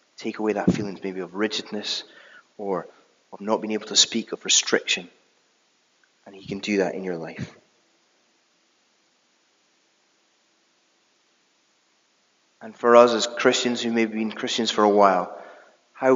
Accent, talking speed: British, 140 wpm